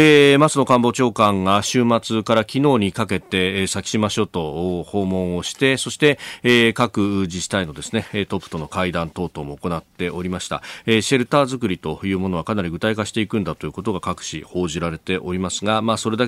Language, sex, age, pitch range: Japanese, male, 40-59, 95-135 Hz